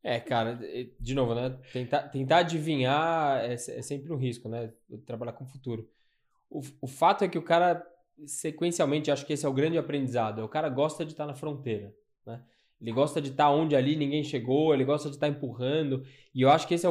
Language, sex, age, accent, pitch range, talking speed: Portuguese, male, 10-29, Brazilian, 135-165 Hz, 215 wpm